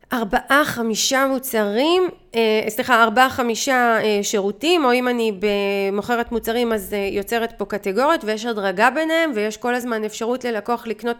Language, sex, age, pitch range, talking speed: Hebrew, female, 30-49, 210-275 Hz, 135 wpm